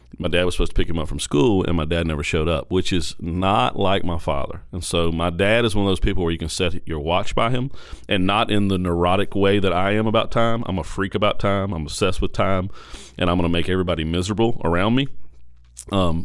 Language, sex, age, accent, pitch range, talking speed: English, male, 40-59, American, 75-95 Hz, 255 wpm